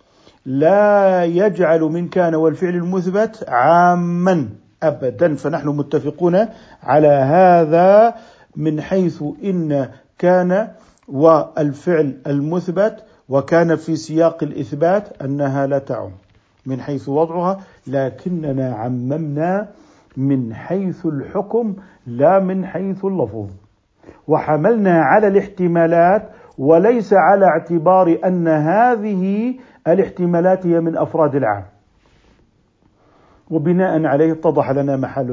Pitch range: 140-185 Hz